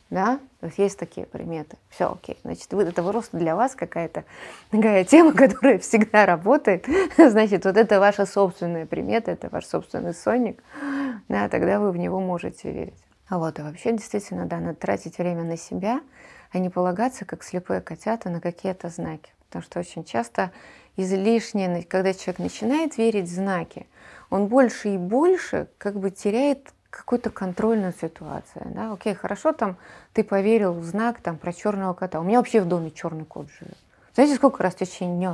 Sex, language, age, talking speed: female, Russian, 20-39, 175 wpm